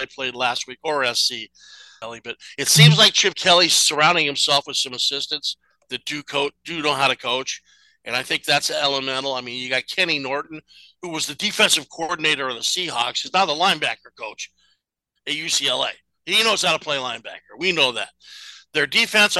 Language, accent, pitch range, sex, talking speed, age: English, American, 140-190 Hz, male, 190 wpm, 50-69